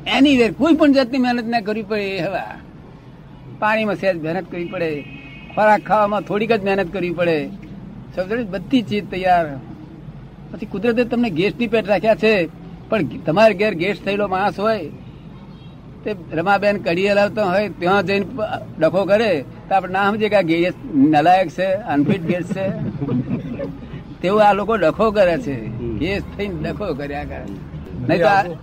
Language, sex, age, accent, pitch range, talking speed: Gujarati, male, 60-79, native, 165-210 Hz, 70 wpm